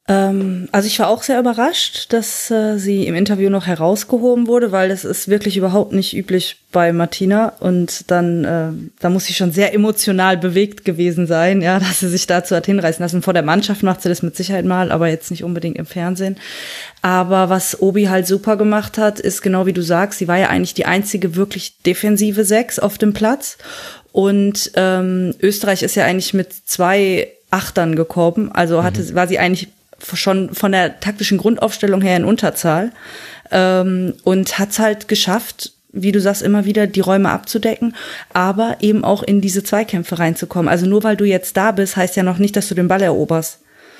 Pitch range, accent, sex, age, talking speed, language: 180-205 Hz, German, female, 20-39, 195 wpm, German